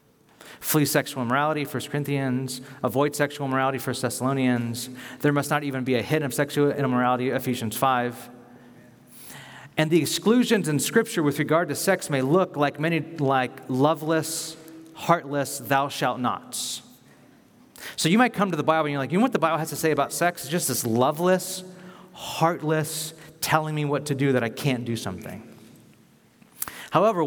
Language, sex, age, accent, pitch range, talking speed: English, male, 30-49, American, 135-170 Hz, 170 wpm